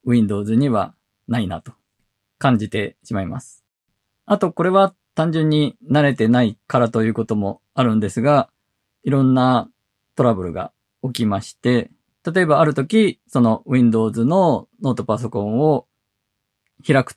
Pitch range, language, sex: 110-155 Hz, Japanese, male